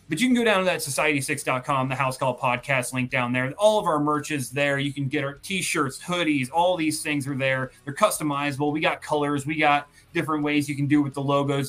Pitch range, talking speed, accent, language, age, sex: 140-160 Hz, 240 wpm, American, English, 20-39, male